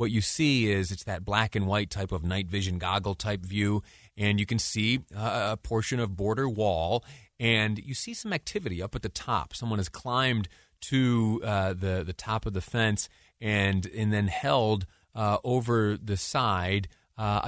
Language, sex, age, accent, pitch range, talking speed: English, male, 30-49, American, 95-115 Hz, 170 wpm